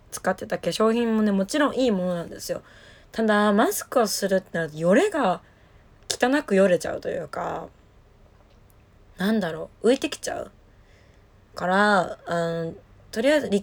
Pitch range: 165-240 Hz